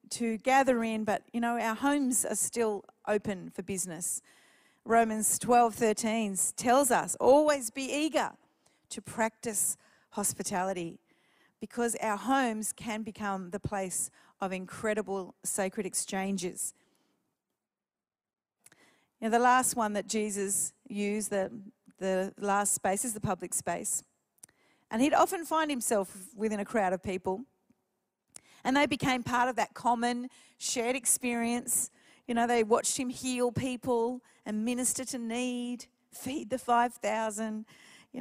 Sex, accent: female, Australian